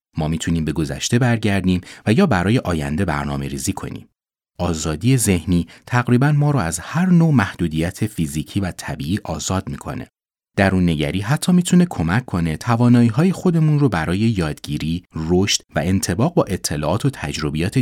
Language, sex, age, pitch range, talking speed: Persian, male, 30-49, 80-130 Hz, 145 wpm